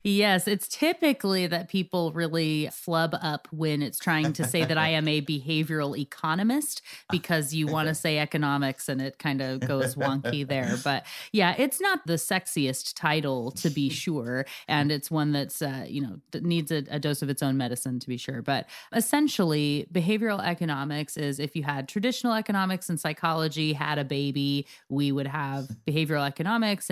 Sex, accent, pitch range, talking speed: female, American, 145-180 Hz, 180 wpm